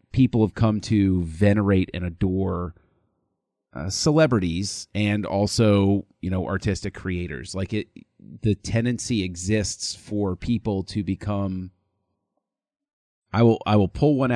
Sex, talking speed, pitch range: male, 125 wpm, 90-110 Hz